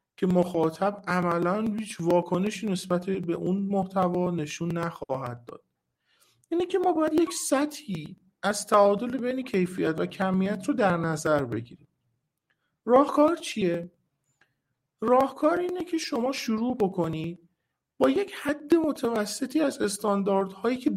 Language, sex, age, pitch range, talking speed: Persian, male, 50-69, 170-255 Hz, 125 wpm